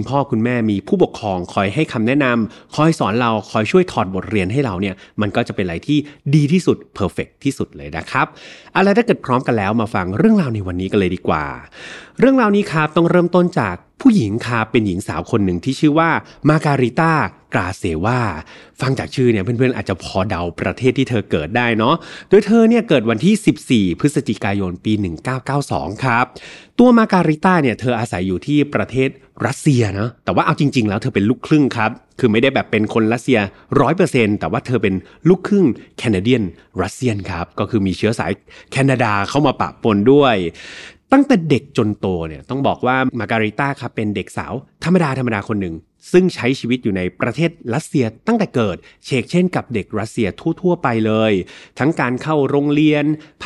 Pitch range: 105-155 Hz